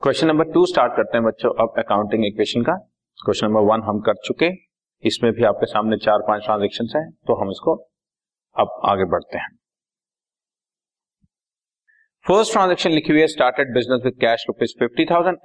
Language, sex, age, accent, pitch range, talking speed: Hindi, male, 40-59, native, 105-170 Hz, 115 wpm